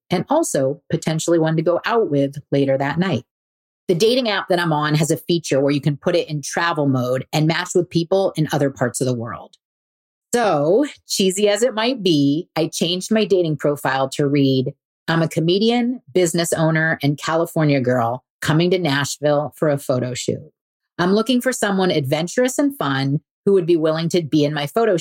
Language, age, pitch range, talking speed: English, 30-49, 140-185 Hz, 195 wpm